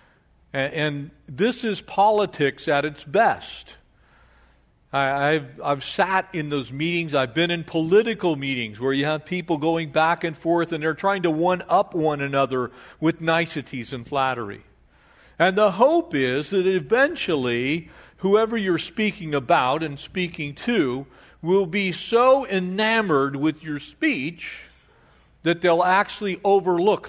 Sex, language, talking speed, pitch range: male, English, 135 wpm, 120-190 Hz